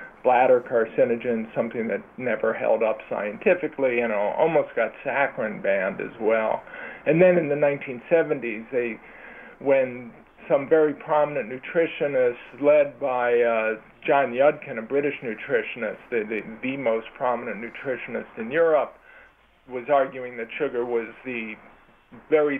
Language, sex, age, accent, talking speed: English, male, 50-69, American, 130 wpm